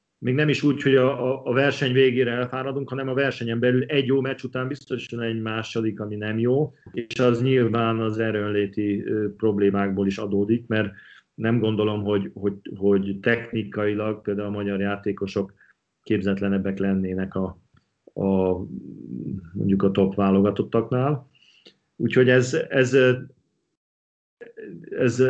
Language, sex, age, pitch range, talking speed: Hungarian, male, 40-59, 105-125 Hz, 130 wpm